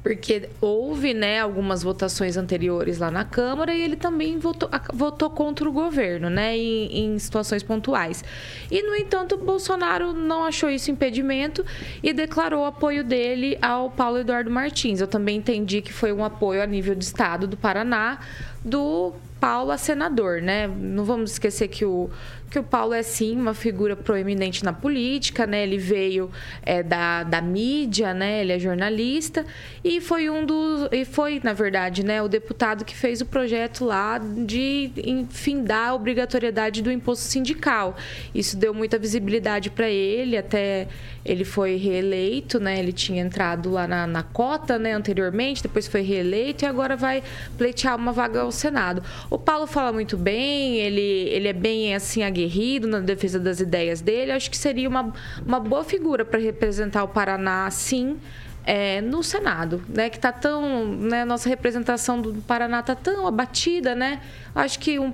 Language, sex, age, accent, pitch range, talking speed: Portuguese, female, 20-39, Brazilian, 200-265 Hz, 170 wpm